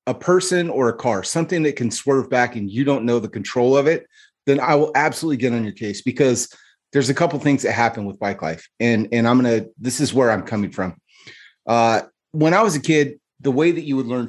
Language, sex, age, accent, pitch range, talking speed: English, male, 30-49, American, 110-140 Hz, 250 wpm